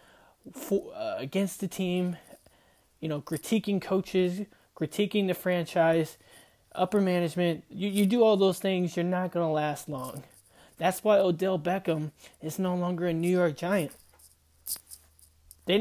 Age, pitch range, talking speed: 20-39, 155-195 Hz, 140 wpm